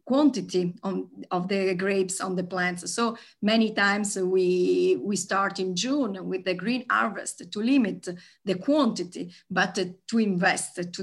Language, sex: English, female